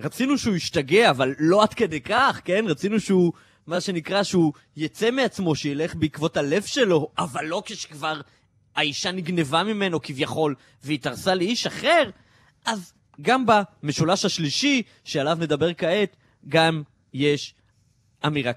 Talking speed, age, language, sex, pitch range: 130 wpm, 20-39, Hebrew, male, 120-170 Hz